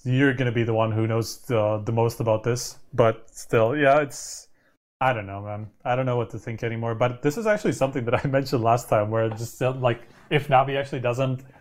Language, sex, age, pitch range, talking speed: English, male, 20-39, 115-135 Hz, 240 wpm